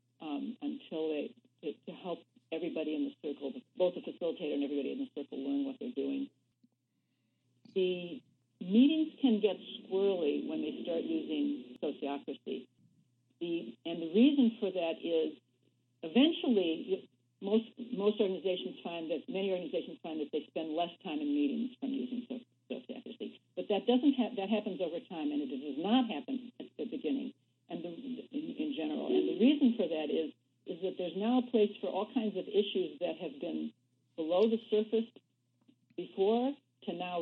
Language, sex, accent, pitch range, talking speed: English, female, American, 160-250 Hz, 170 wpm